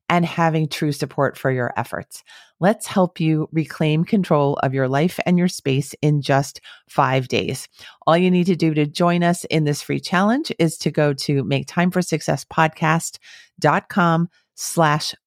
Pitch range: 150-185 Hz